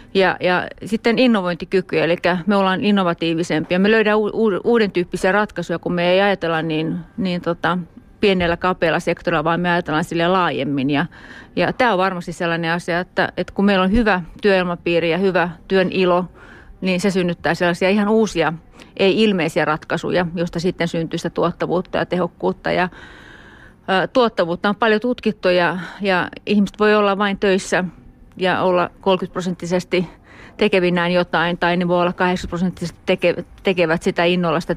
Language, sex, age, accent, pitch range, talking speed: Finnish, female, 30-49, native, 170-195 Hz, 155 wpm